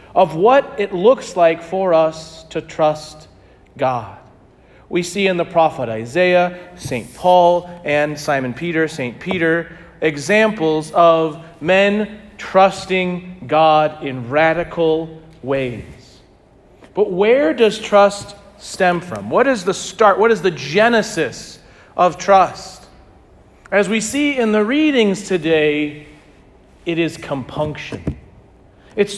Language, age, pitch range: English, 40-59, 165-225 Hz